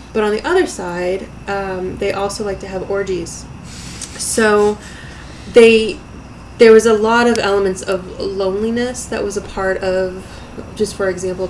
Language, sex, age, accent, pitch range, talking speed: English, female, 20-39, American, 180-200 Hz, 155 wpm